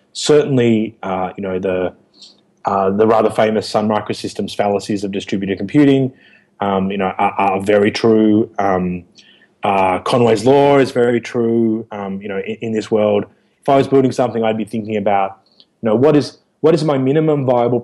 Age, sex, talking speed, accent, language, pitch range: 20-39, male, 180 wpm, Australian, English, 100-120 Hz